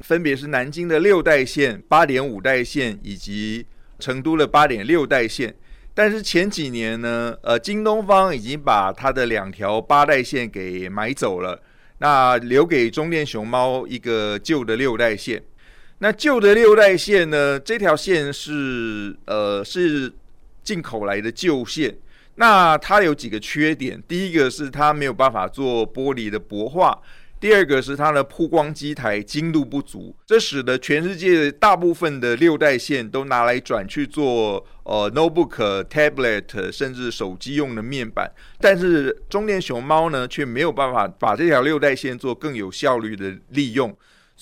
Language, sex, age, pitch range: Chinese, male, 30-49, 115-160 Hz